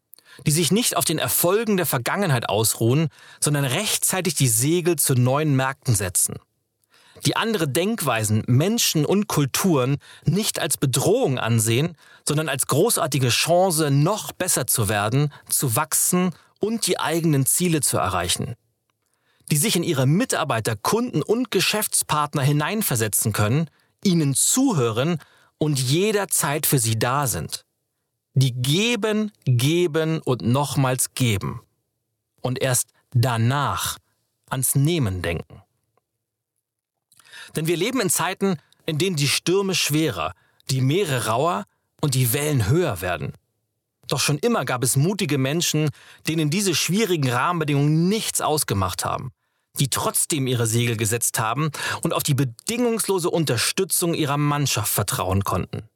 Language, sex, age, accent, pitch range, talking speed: German, male, 40-59, German, 120-170 Hz, 130 wpm